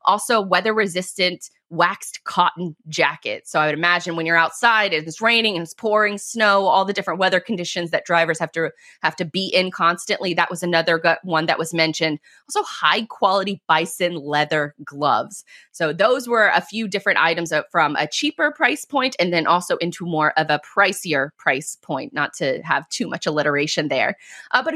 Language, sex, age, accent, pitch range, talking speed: English, female, 20-39, American, 170-210 Hz, 185 wpm